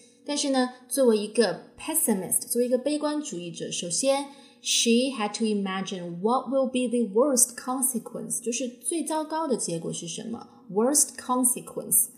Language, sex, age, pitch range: Chinese, female, 20-39, 200-250 Hz